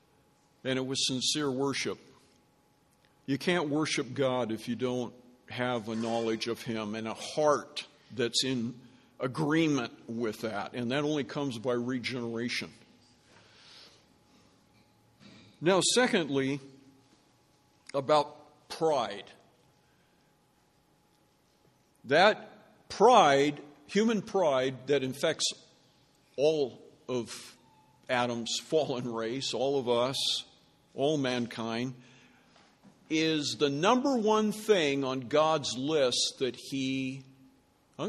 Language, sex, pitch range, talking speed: English, male, 125-165 Hz, 100 wpm